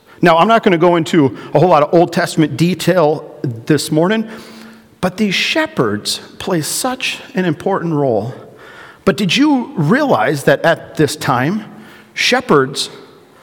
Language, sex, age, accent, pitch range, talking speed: English, male, 40-59, American, 140-200 Hz, 150 wpm